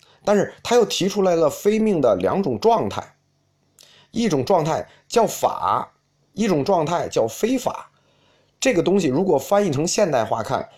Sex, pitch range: male, 140-225 Hz